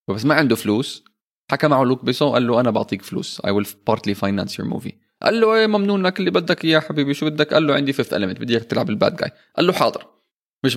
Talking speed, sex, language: 230 wpm, male, Arabic